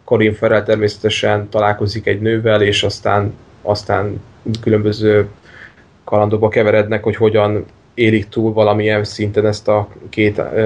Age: 10-29